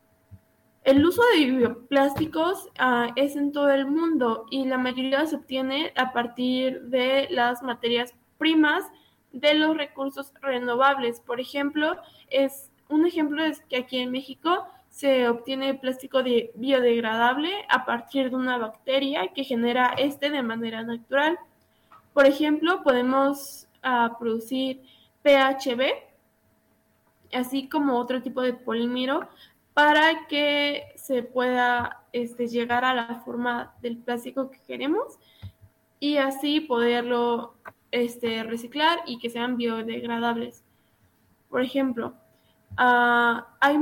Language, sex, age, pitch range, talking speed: Spanish, female, 10-29, 240-285 Hz, 120 wpm